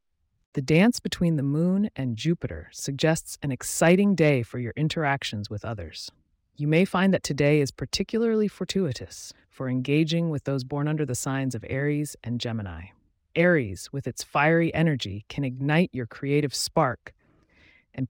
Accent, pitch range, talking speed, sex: American, 115-160 Hz, 155 wpm, female